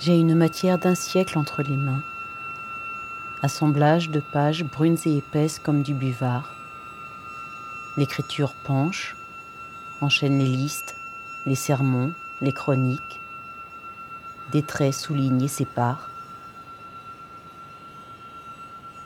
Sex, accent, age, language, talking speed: female, French, 50-69, French, 100 wpm